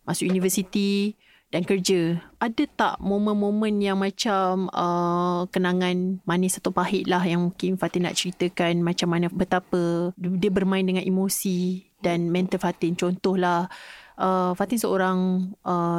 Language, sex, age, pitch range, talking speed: Malay, female, 30-49, 180-210 Hz, 130 wpm